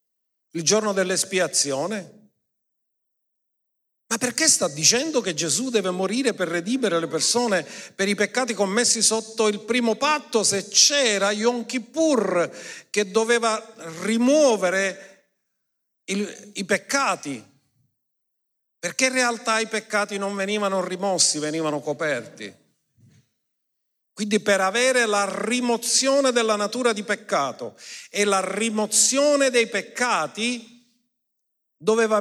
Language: Italian